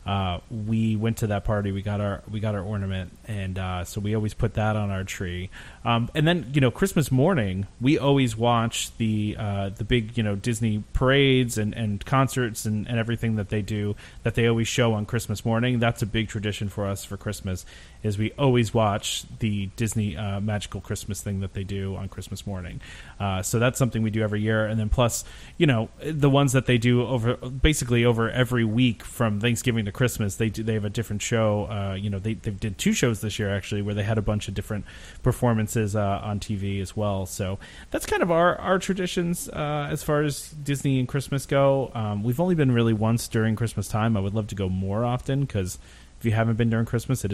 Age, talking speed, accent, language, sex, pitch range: 30-49, 225 wpm, American, English, male, 105-125 Hz